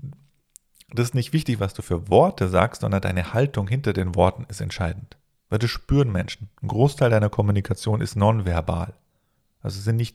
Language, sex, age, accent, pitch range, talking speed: German, male, 40-59, German, 95-115 Hz, 185 wpm